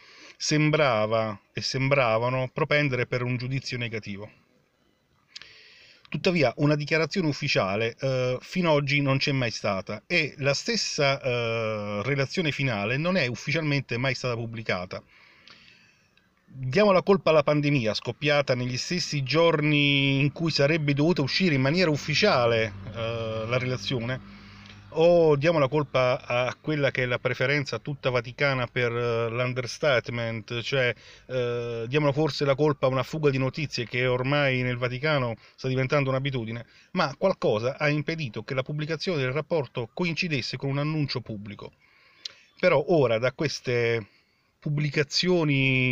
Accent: native